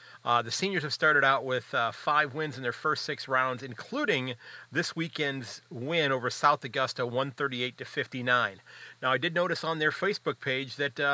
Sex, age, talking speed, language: male, 40-59, 180 wpm, English